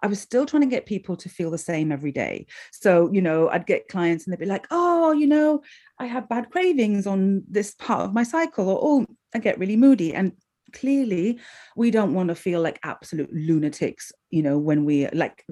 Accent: British